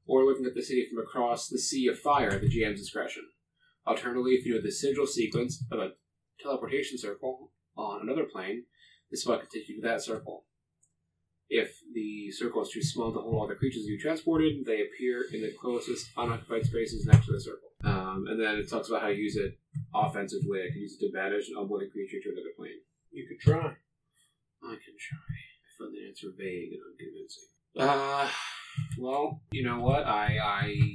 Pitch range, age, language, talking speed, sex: 115-155 Hz, 30-49, English, 200 wpm, male